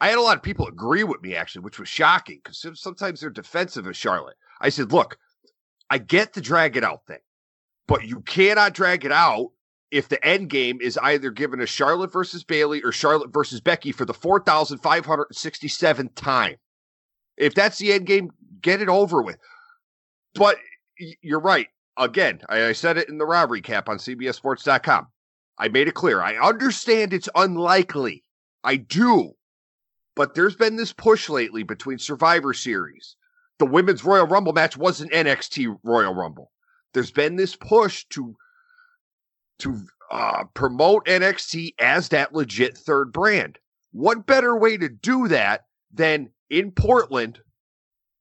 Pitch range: 145-205 Hz